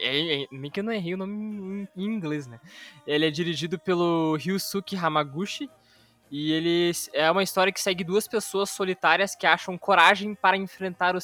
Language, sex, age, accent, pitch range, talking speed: Portuguese, male, 20-39, Brazilian, 160-190 Hz, 190 wpm